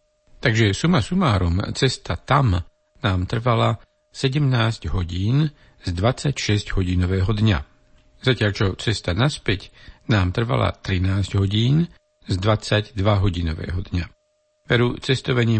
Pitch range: 100-120 Hz